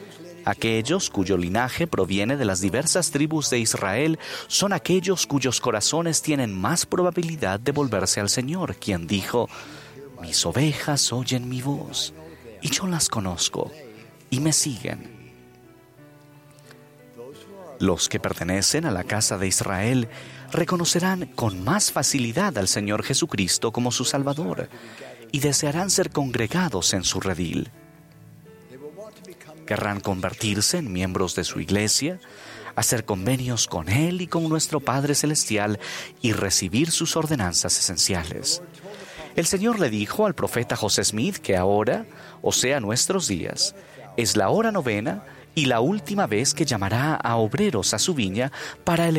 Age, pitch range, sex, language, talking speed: 40-59, 100-160 Hz, male, Spanish, 135 wpm